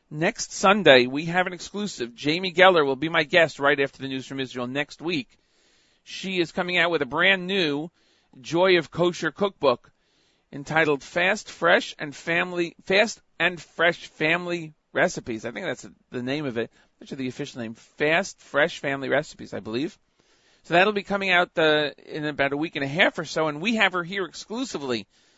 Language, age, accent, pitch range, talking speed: English, 40-59, American, 125-170 Hz, 190 wpm